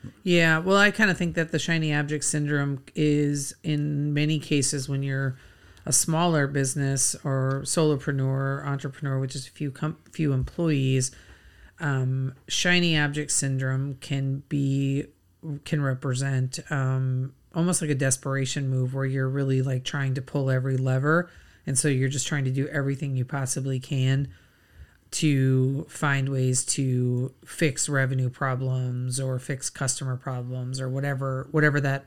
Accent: American